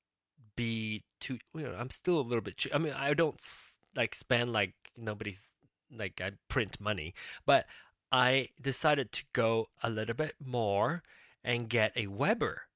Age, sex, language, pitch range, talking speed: 20-39, male, English, 105-135 Hz, 170 wpm